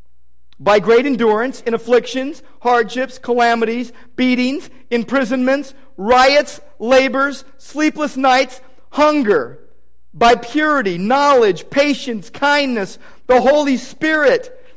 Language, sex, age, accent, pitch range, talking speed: English, male, 50-69, American, 205-280 Hz, 90 wpm